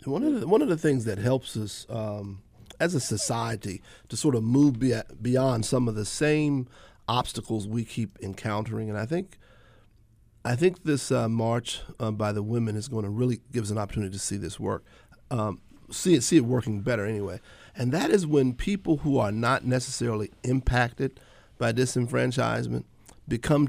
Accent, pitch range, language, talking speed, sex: American, 110-135 Hz, English, 180 wpm, male